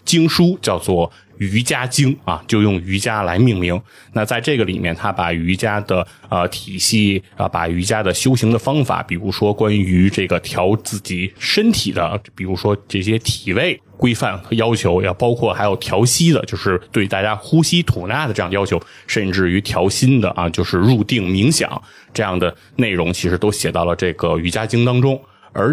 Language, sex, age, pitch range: Chinese, male, 20-39, 95-125 Hz